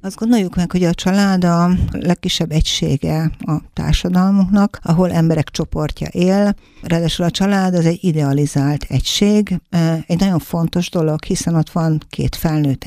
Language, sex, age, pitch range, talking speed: Hungarian, female, 60-79, 150-175 Hz, 145 wpm